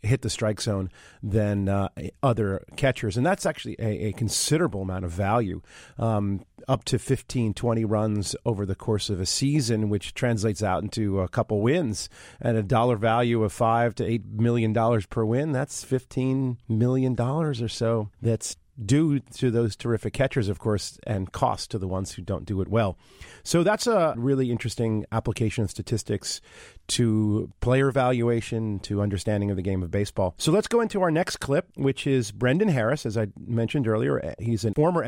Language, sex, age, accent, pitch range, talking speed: English, male, 40-59, American, 105-130 Hz, 185 wpm